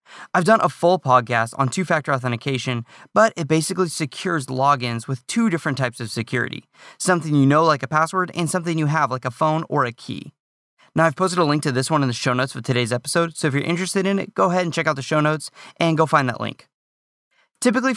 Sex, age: male, 20-39